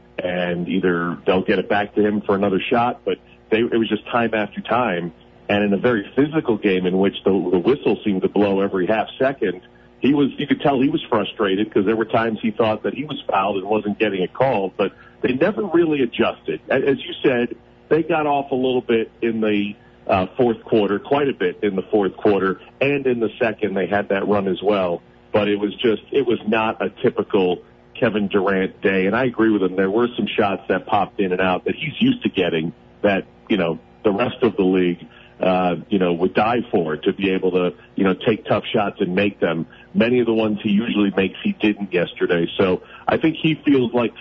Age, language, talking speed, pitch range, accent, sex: 40-59, English, 225 wpm, 95-120 Hz, American, male